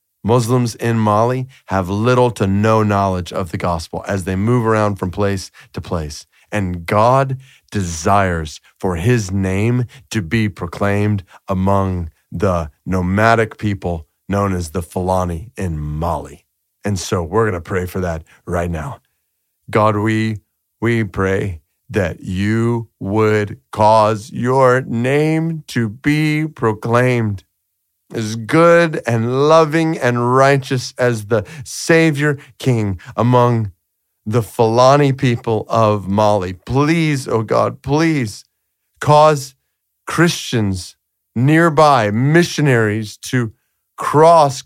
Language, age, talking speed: English, 40-59, 115 wpm